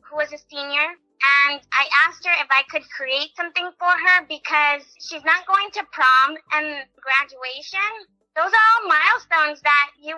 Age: 20-39